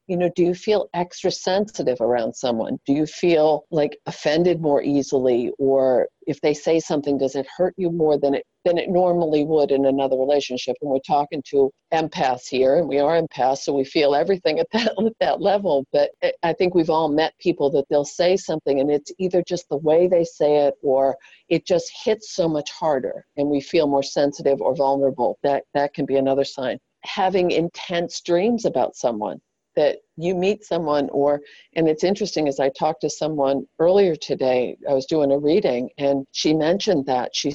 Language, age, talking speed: English, 50-69, 200 wpm